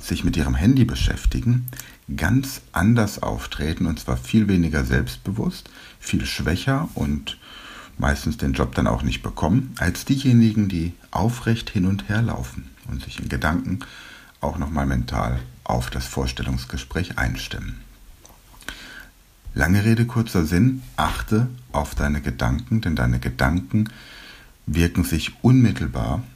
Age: 60-79